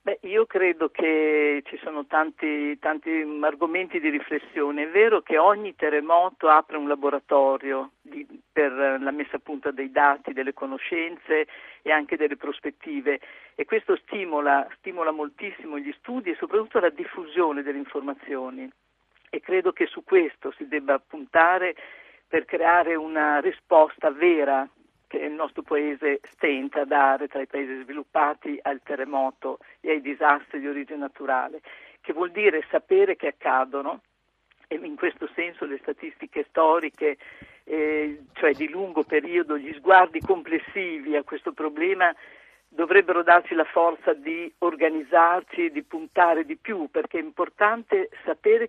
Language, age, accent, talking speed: Italian, 50-69, native, 145 wpm